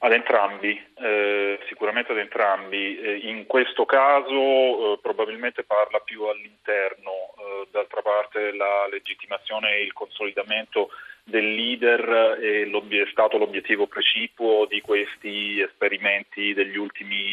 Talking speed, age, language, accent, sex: 120 wpm, 30-49, Italian, native, male